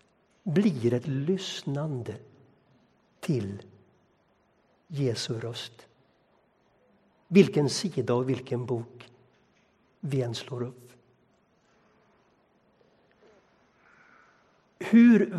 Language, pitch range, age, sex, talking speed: Swedish, 125-200 Hz, 60-79, male, 60 wpm